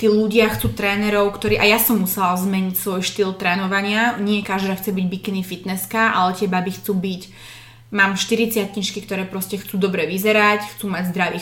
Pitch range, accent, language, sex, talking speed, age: 190-215 Hz, native, Czech, female, 185 wpm, 20-39